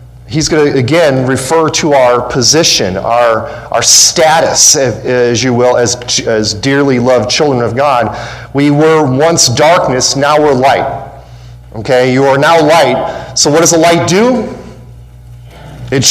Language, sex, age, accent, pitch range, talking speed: English, male, 40-59, American, 120-155 Hz, 150 wpm